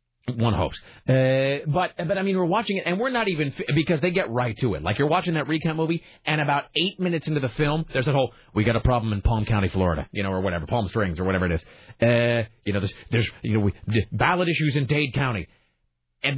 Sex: male